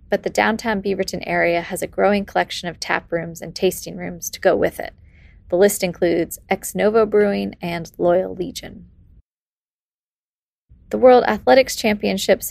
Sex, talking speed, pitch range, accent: female, 155 wpm, 175-205 Hz, American